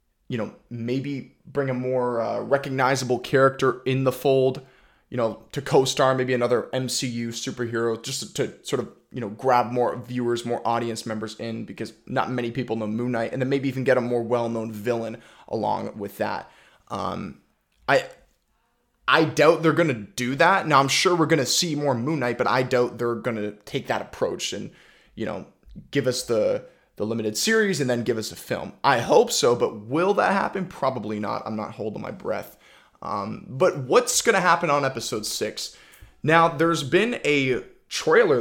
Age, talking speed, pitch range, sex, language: 20-39, 190 wpm, 115-140 Hz, male, English